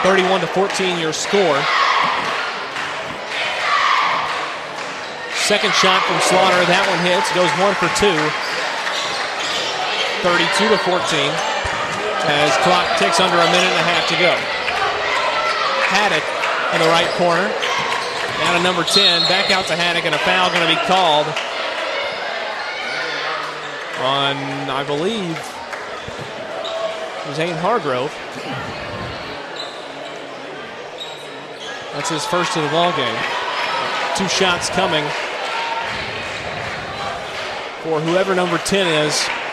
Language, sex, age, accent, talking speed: English, male, 30-49, American, 105 wpm